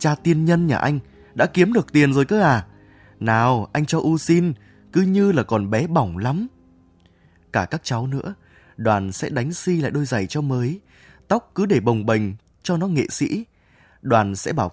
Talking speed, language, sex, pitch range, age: 205 wpm, Vietnamese, male, 105-165 Hz, 20-39